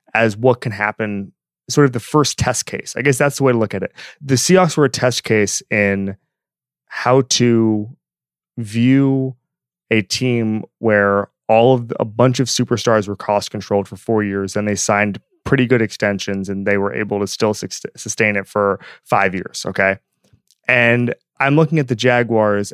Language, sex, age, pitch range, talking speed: English, male, 20-39, 105-125 Hz, 185 wpm